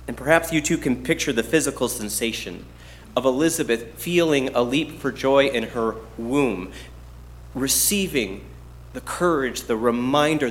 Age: 30-49